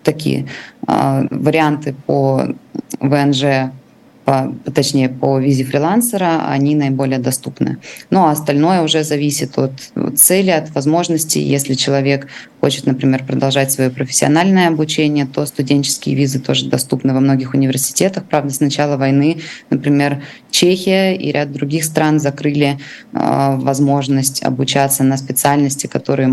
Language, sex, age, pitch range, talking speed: Russian, female, 20-39, 135-155 Hz, 125 wpm